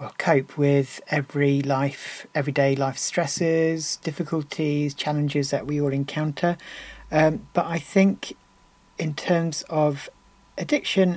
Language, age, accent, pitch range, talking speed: English, 40-59, British, 140-165 Hz, 120 wpm